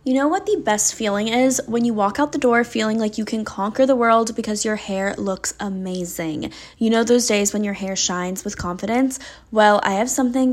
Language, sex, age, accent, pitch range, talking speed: English, female, 10-29, American, 195-245 Hz, 220 wpm